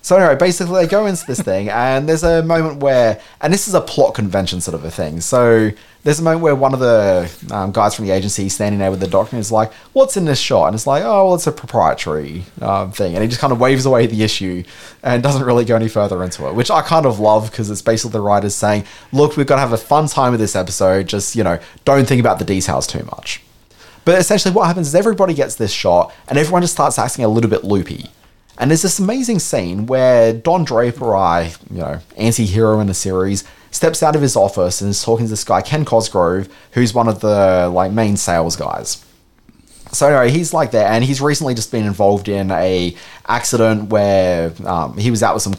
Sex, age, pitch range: male, 20-39, 95-140 Hz